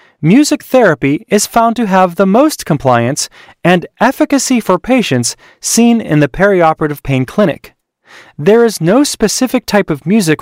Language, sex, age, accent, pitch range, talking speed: English, male, 30-49, American, 150-235 Hz, 150 wpm